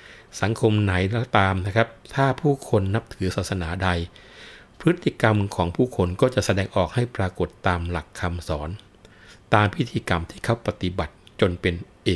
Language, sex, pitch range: Thai, male, 85-110 Hz